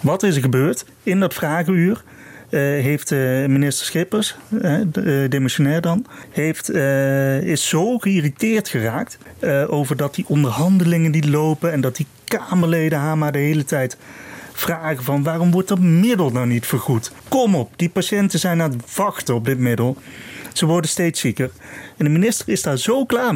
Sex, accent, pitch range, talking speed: male, Dutch, 135-185 Hz, 155 wpm